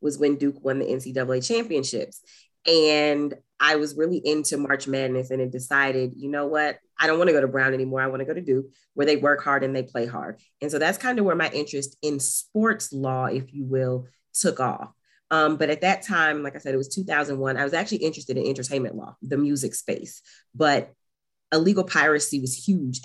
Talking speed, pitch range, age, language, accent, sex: 220 wpm, 135-160 Hz, 30-49, English, American, female